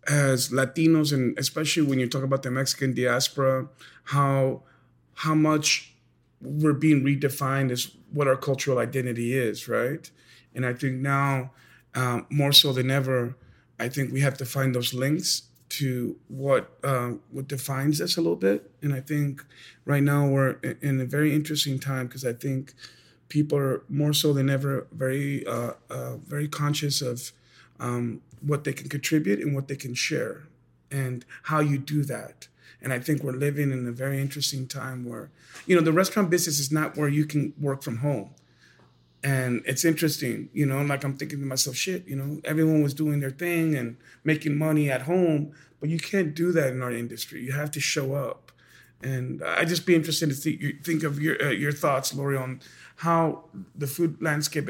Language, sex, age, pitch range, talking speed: English, male, 30-49, 130-150 Hz, 185 wpm